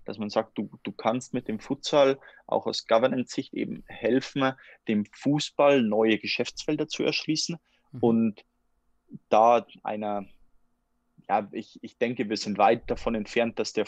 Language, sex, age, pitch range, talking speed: German, male, 20-39, 100-120 Hz, 145 wpm